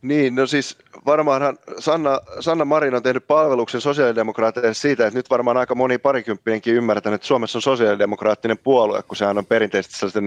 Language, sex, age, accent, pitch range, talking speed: Finnish, male, 30-49, native, 105-140 Hz, 170 wpm